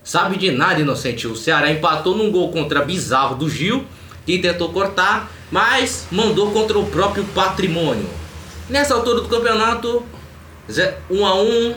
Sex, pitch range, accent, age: male, 145-200 Hz, Brazilian, 20-39